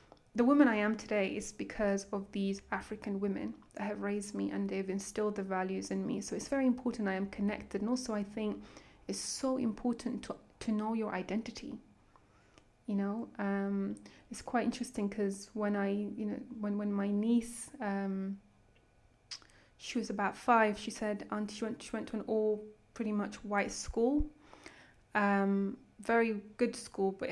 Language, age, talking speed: French, 20-39, 175 wpm